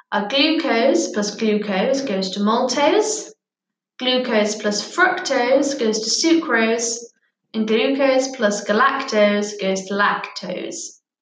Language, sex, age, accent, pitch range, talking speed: English, female, 10-29, British, 205-270 Hz, 105 wpm